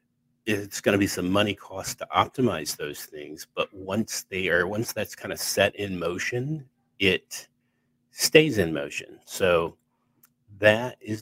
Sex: male